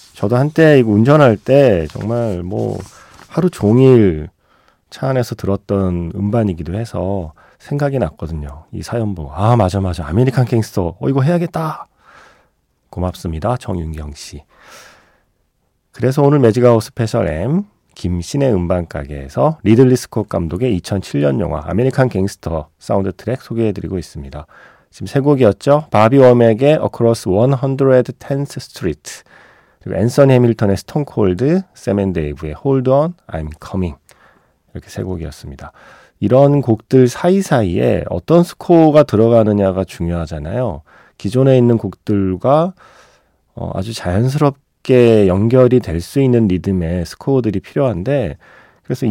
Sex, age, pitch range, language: male, 40-59, 95-135 Hz, Korean